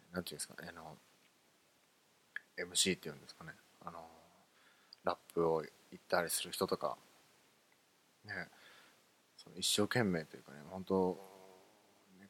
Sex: male